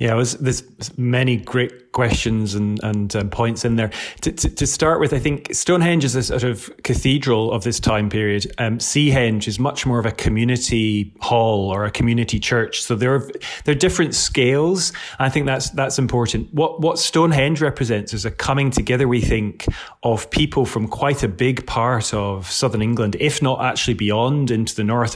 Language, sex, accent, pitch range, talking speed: English, male, British, 110-130 Hz, 195 wpm